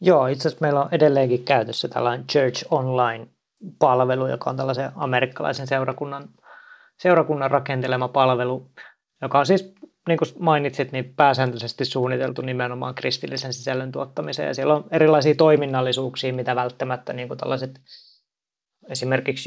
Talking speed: 125 wpm